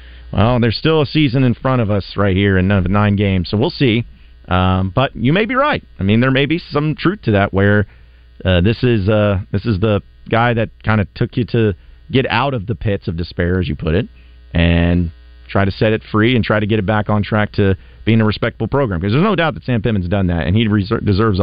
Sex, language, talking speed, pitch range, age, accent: male, English, 245 wpm, 85-115 Hz, 40-59, American